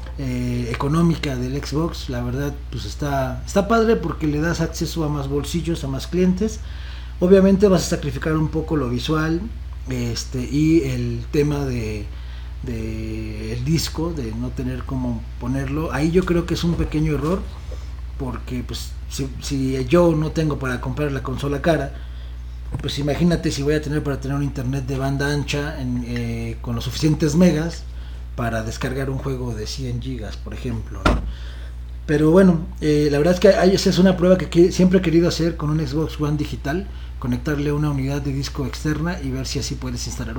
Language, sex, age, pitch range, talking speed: Spanish, male, 40-59, 120-165 Hz, 185 wpm